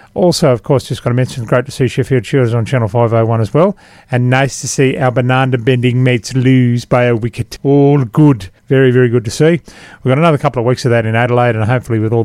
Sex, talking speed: male, 245 wpm